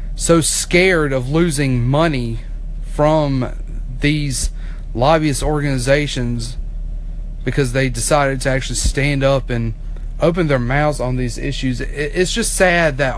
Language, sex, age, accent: English, male, 30-49, American